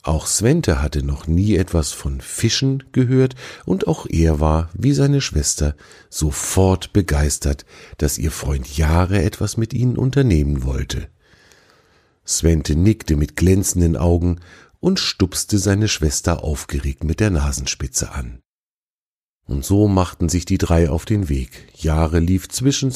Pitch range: 80-110 Hz